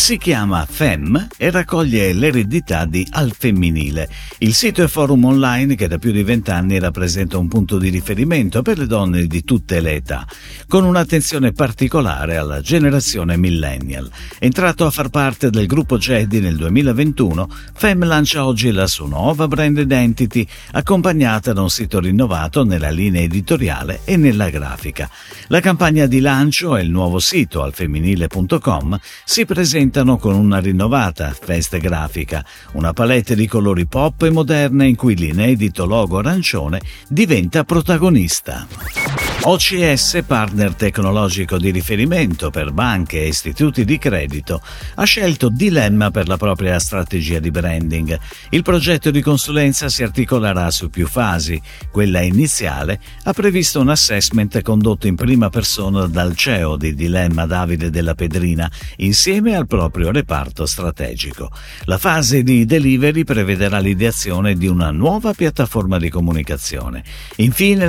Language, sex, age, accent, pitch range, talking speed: Italian, male, 50-69, native, 85-140 Hz, 140 wpm